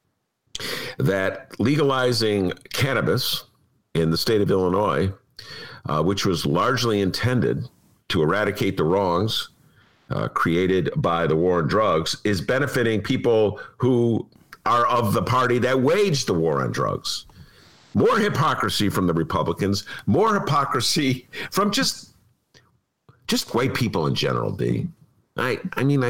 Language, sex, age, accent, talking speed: English, male, 50-69, American, 130 wpm